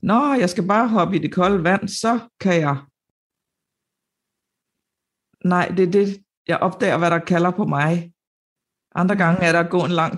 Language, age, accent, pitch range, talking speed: Danish, 60-79, native, 155-185 Hz, 185 wpm